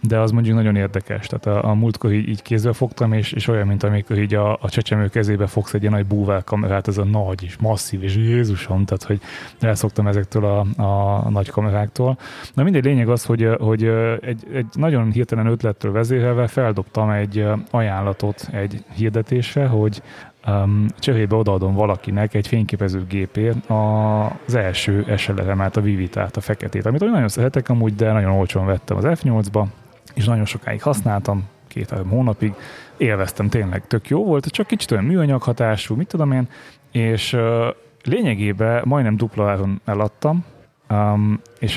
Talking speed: 160 wpm